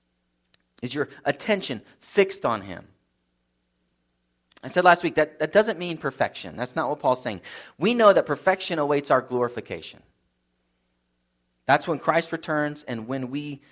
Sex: male